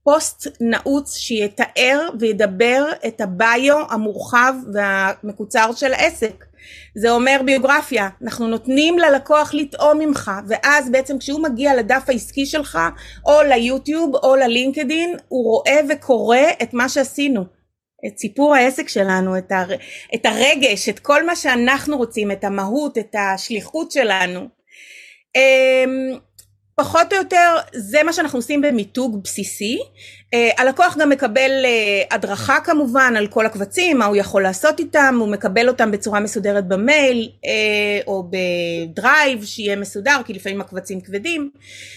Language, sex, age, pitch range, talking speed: Hebrew, female, 30-49, 210-290 Hz, 125 wpm